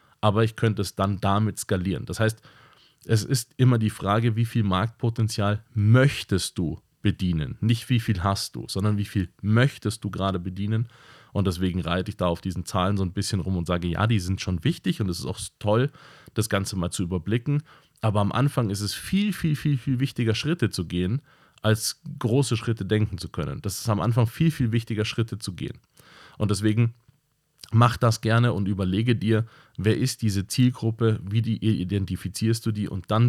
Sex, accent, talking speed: male, German, 195 wpm